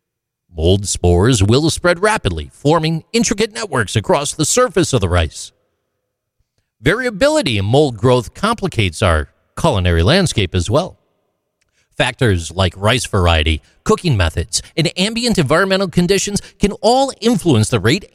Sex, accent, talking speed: male, American, 130 wpm